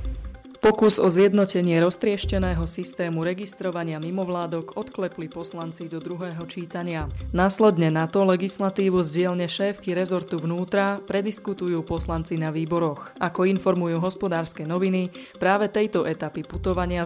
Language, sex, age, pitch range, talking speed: Slovak, female, 20-39, 165-190 Hz, 115 wpm